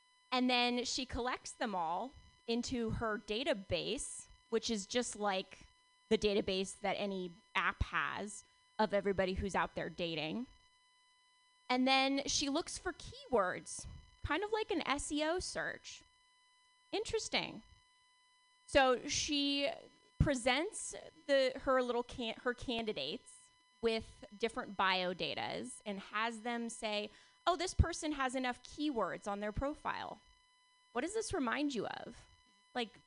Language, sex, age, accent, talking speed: English, female, 20-39, American, 130 wpm